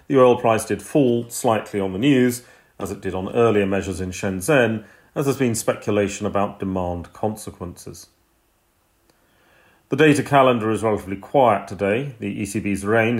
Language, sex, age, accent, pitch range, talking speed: English, male, 40-59, British, 100-125 Hz, 155 wpm